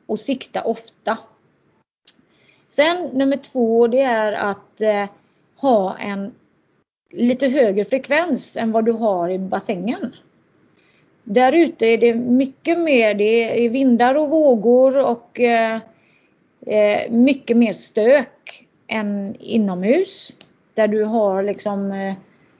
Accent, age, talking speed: native, 30-49, 105 wpm